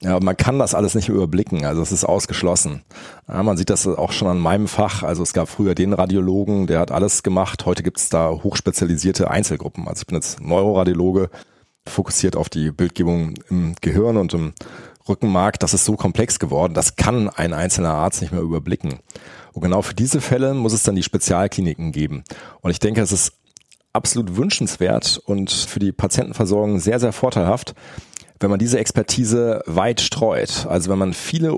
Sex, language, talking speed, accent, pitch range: male, German, 185 wpm, German, 90-110 Hz